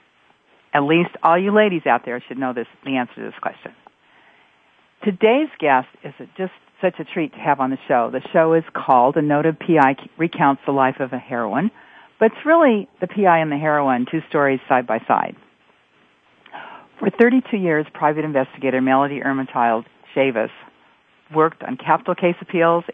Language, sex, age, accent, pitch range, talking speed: English, female, 50-69, American, 130-175 Hz, 175 wpm